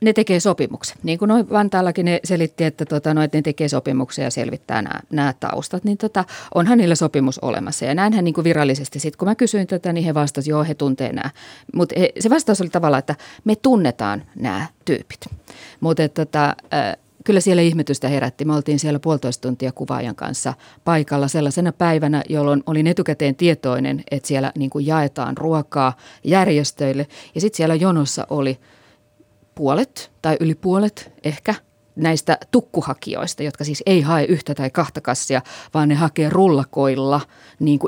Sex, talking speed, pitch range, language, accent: female, 165 wpm, 145-175 Hz, Finnish, native